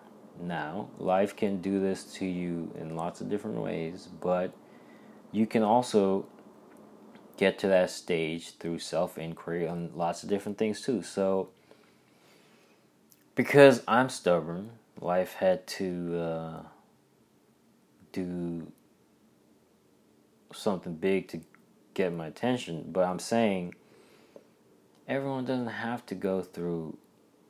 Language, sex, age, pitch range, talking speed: English, male, 30-49, 85-110 Hz, 115 wpm